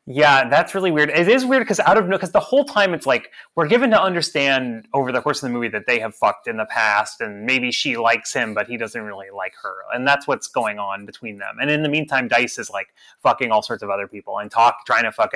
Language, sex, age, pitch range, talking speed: English, male, 30-49, 120-195 Hz, 270 wpm